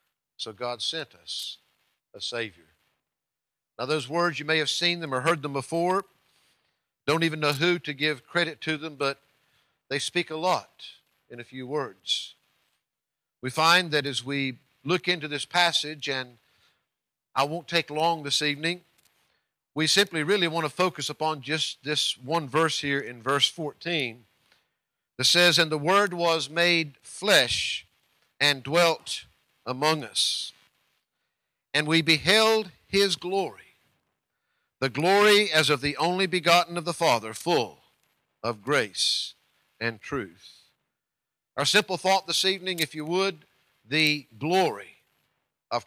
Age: 50-69